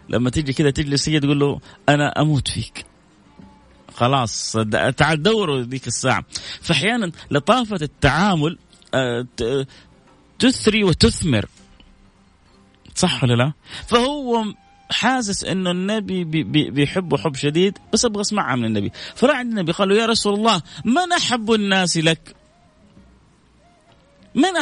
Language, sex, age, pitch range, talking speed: Arabic, male, 30-49, 130-200 Hz, 115 wpm